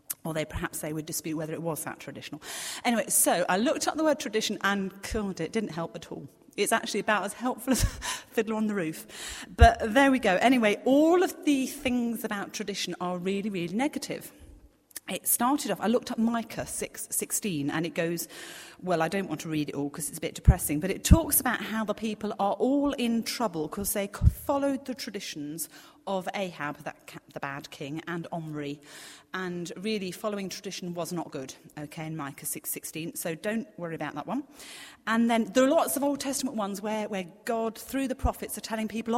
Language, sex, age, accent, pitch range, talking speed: English, female, 40-59, British, 170-245 Hz, 205 wpm